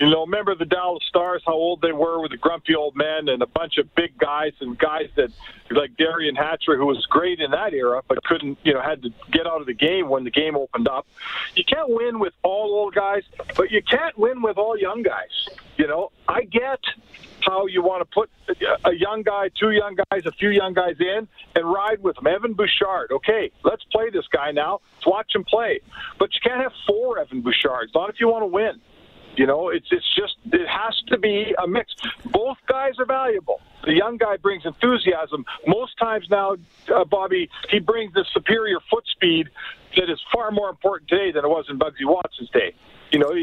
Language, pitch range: English, 165-240 Hz